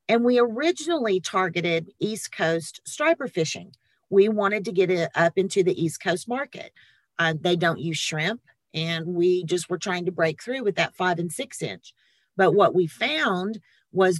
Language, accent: English, American